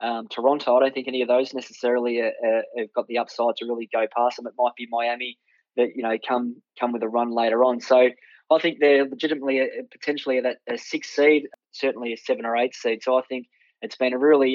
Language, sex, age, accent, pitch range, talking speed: English, male, 20-39, Australian, 120-130 Hz, 225 wpm